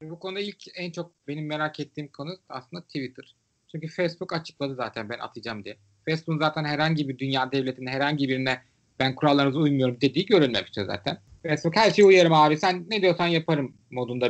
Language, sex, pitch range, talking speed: Turkish, male, 130-170 Hz, 175 wpm